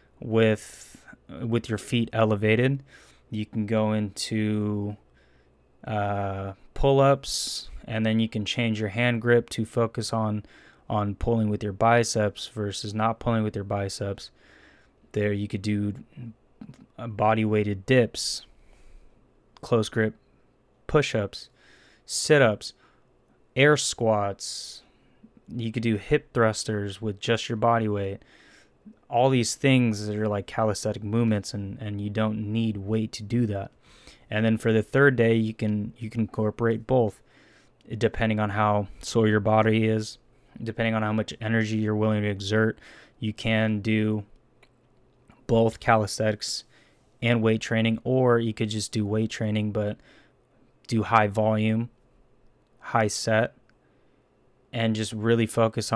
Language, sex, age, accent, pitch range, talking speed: English, male, 20-39, American, 105-115 Hz, 135 wpm